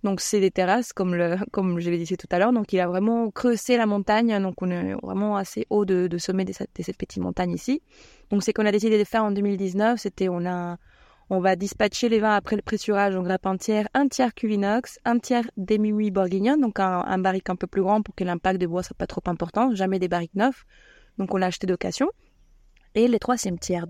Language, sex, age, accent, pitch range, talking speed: French, female, 20-39, French, 185-215 Hz, 240 wpm